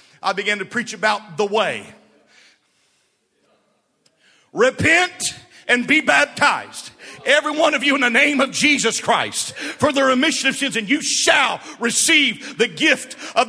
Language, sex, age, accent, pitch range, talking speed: English, male, 50-69, American, 215-265 Hz, 145 wpm